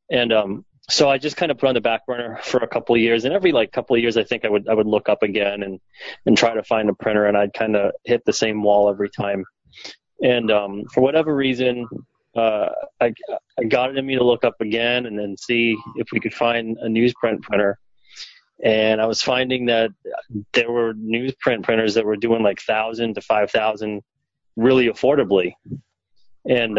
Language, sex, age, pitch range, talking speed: English, male, 30-49, 105-125 Hz, 210 wpm